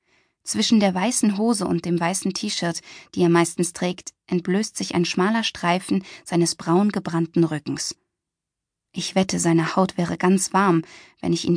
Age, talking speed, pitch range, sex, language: 20-39, 160 wpm, 170-205 Hz, female, German